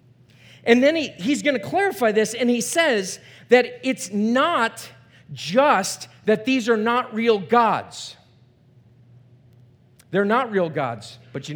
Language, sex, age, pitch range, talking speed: English, male, 40-59, 120-140 Hz, 135 wpm